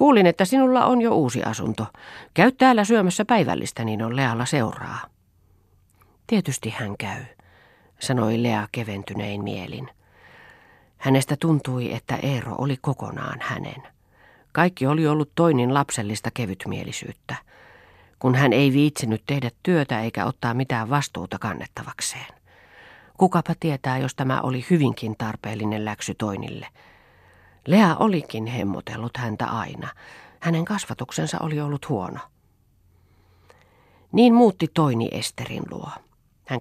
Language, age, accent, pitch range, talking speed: Finnish, 40-59, native, 110-150 Hz, 115 wpm